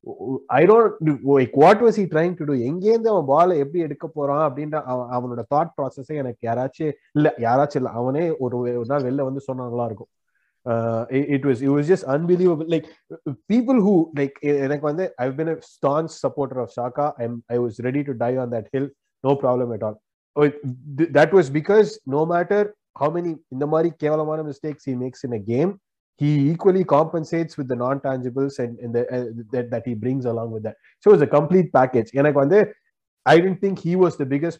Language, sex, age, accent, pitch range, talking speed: Tamil, male, 30-49, native, 130-165 Hz, 195 wpm